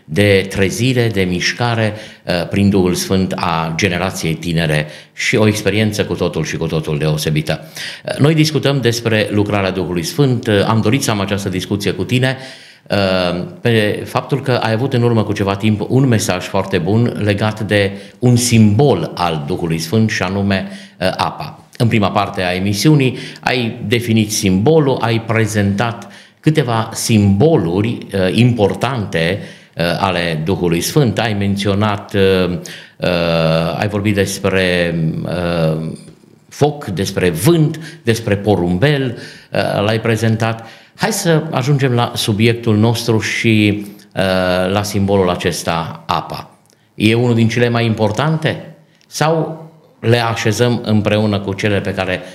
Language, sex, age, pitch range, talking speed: Romanian, male, 50-69, 95-120 Hz, 125 wpm